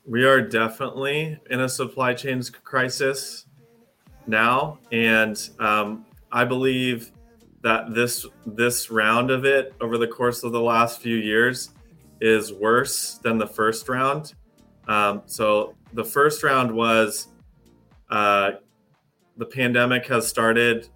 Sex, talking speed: male, 125 wpm